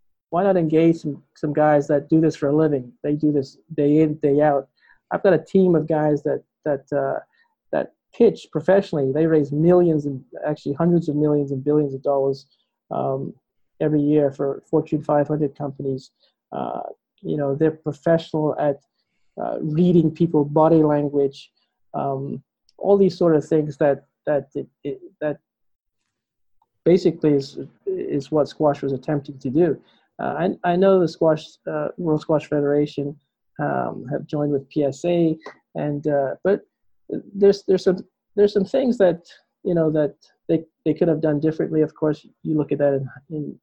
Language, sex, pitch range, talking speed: English, male, 145-165 Hz, 170 wpm